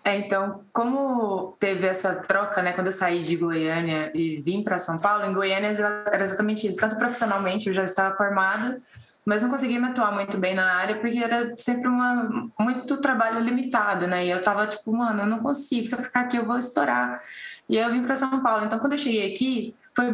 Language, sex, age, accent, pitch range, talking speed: Portuguese, female, 20-39, Brazilian, 195-245 Hz, 220 wpm